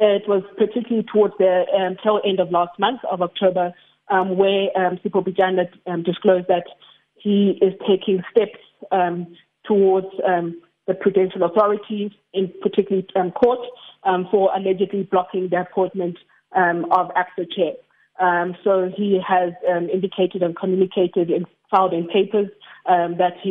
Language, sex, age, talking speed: English, female, 20-39, 150 wpm